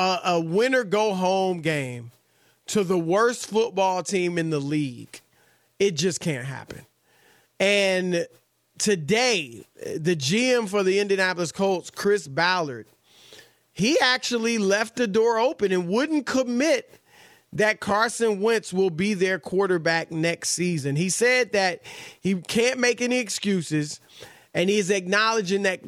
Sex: male